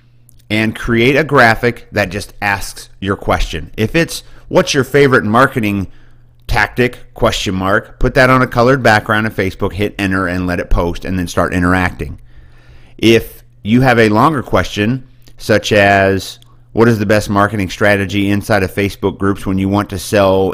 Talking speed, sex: 170 wpm, male